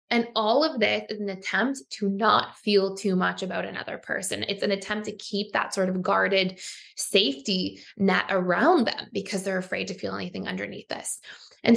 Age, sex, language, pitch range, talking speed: 20-39, female, English, 195-230 Hz, 190 wpm